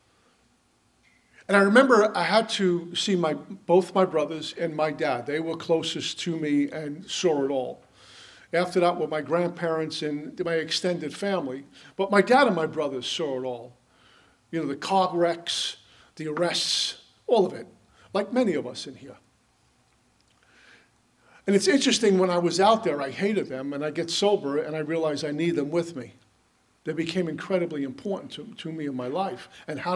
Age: 50-69